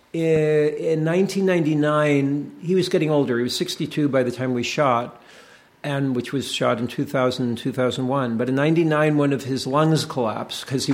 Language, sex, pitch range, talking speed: English, male, 130-160 Hz, 175 wpm